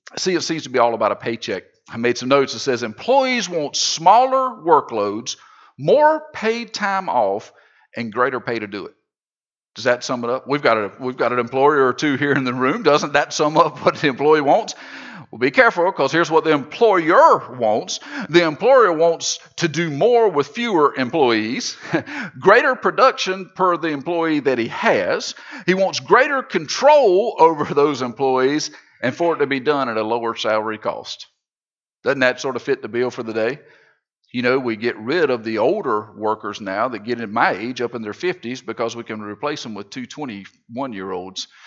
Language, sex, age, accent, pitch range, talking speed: English, male, 50-69, American, 120-170 Hz, 190 wpm